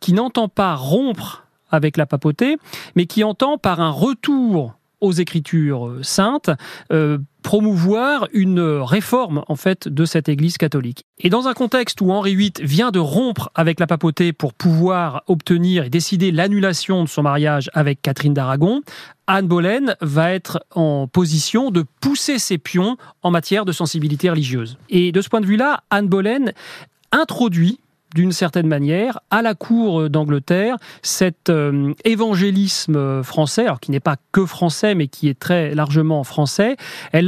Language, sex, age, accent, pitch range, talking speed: French, male, 40-59, French, 155-205 Hz, 155 wpm